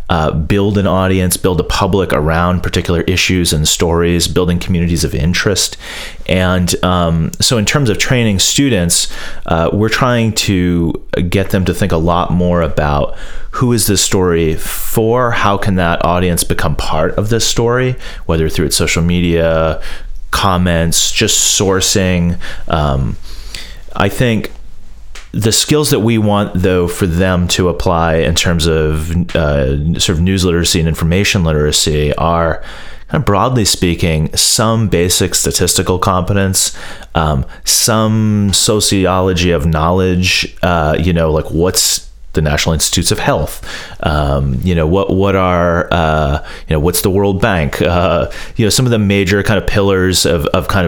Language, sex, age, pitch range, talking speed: English, male, 30-49, 85-100 Hz, 155 wpm